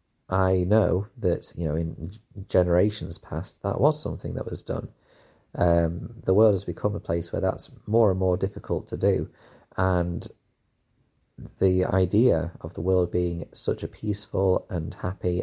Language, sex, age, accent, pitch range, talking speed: English, male, 30-49, British, 85-100 Hz, 160 wpm